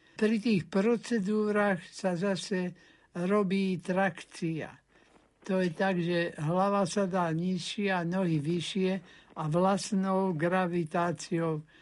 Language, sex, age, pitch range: Slovak, male, 60-79, 170-200 Hz